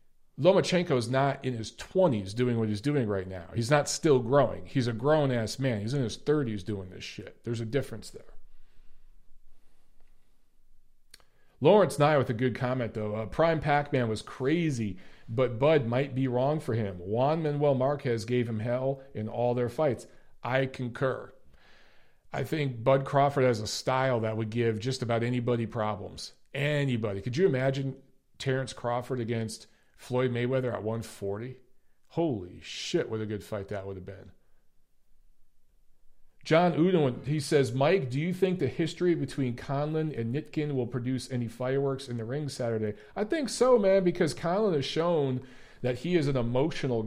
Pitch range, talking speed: 115-145 Hz, 170 wpm